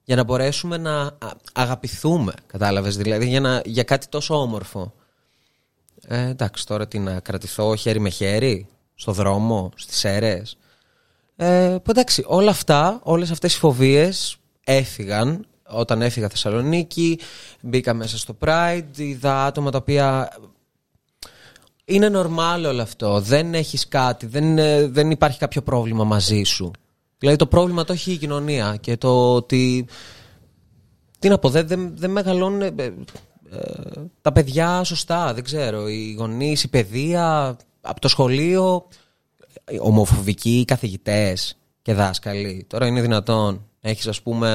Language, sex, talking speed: Greek, male, 135 wpm